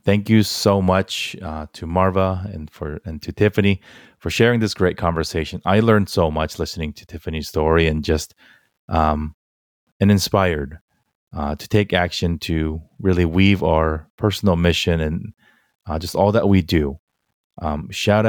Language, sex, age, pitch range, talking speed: English, male, 30-49, 80-100 Hz, 160 wpm